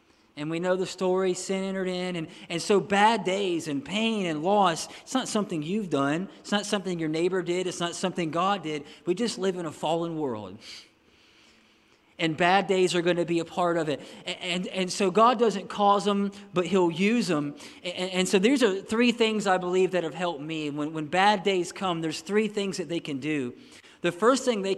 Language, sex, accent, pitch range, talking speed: English, male, American, 165-205 Hz, 225 wpm